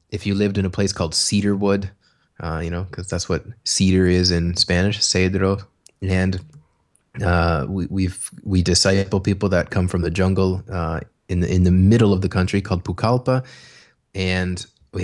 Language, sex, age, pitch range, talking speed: English, male, 20-39, 90-105 Hz, 175 wpm